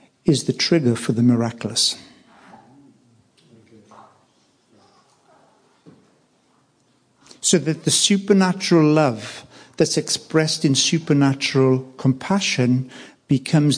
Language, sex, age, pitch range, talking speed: English, male, 60-79, 130-170 Hz, 75 wpm